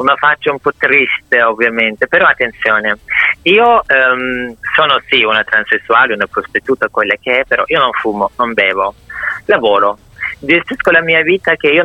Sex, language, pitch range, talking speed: male, Italian, 110-150 Hz, 160 wpm